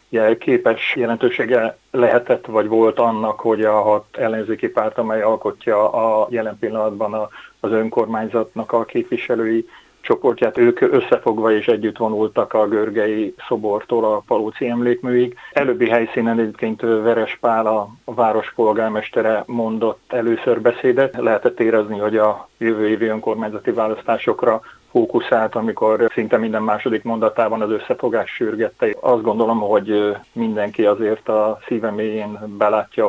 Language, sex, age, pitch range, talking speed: Hungarian, male, 30-49, 110-120 Hz, 120 wpm